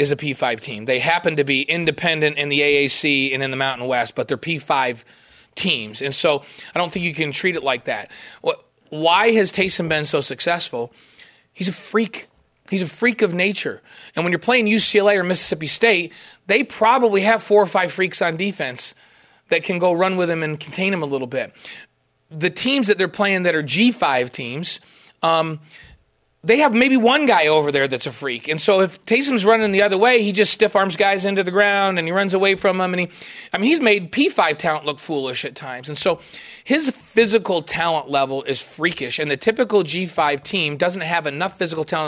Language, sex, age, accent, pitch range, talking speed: English, male, 30-49, American, 145-205 Hz, 205 wpm